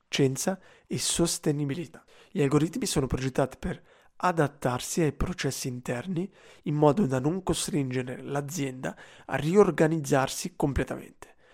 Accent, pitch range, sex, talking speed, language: native, 140-175 Hz, male, 105 wpm, Italian